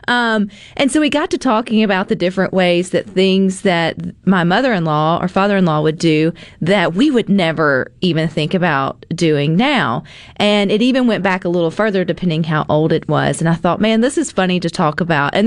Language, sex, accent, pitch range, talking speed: English, female, American, 165-210 Hz, 205 wpm